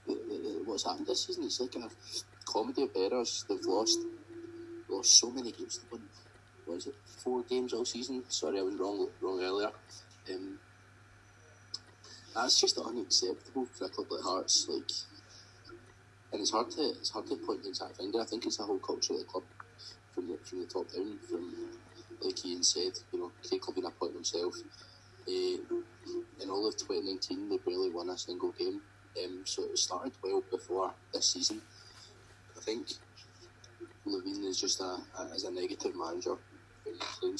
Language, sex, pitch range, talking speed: English, male, 315-380 Hz, 175 wpm